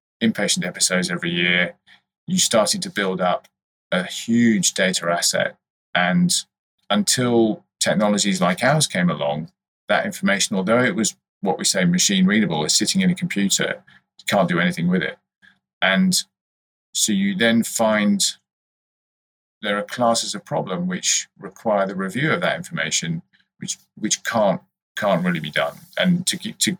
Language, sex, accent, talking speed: English, male, British, 150 wpm